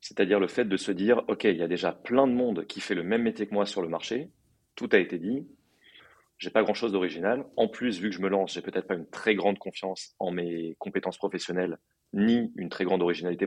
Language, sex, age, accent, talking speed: French, male, 30-49, French, 255 wpm